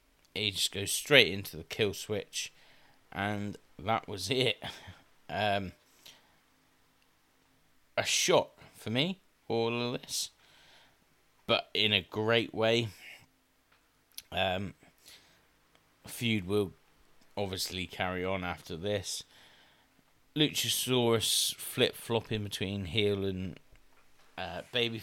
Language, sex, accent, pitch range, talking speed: English, male, British, 95-115 Hz, 100 wpm